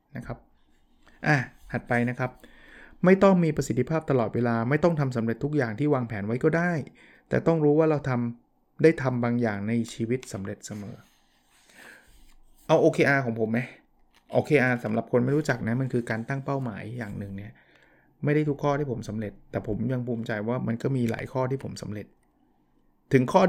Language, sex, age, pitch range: Thai, male, 20-39, 115-150 Hz